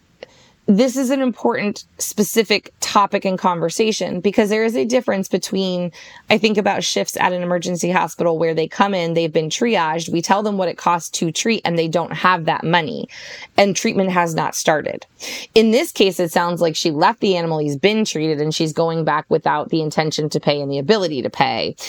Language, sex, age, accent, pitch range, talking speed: English, female, 20-39, American, 165-210 Hz, 205 wpm